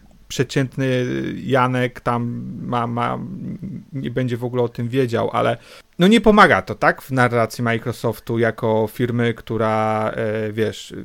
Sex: male